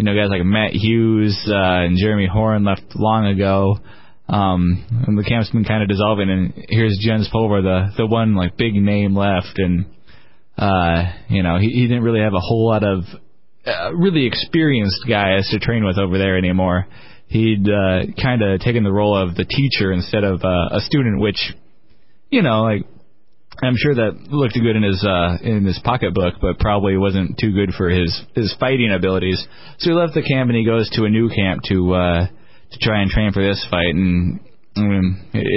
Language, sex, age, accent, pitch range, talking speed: English, male, 20-39, American, 95-115 Hz, 200 wpm